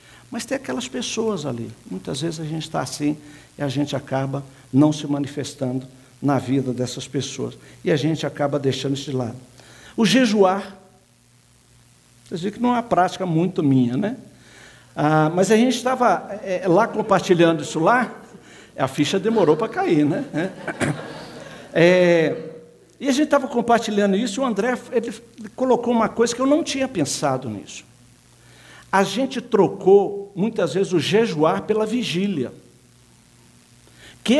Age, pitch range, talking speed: 60-79, 150-225 Hz, 155 wpm